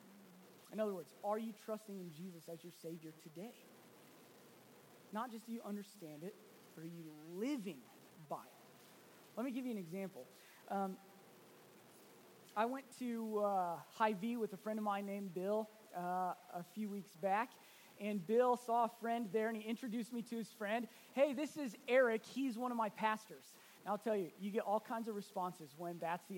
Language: English